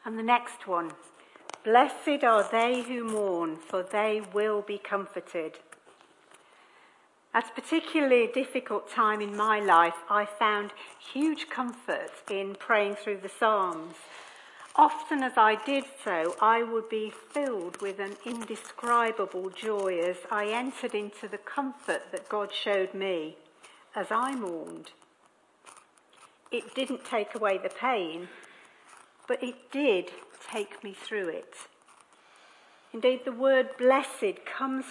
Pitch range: 205-265 Hz